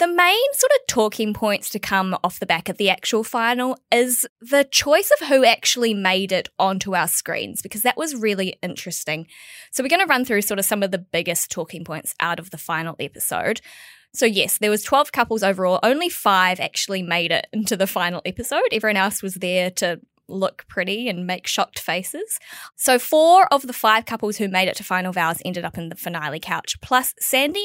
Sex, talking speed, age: female, 210 wpm, 20-39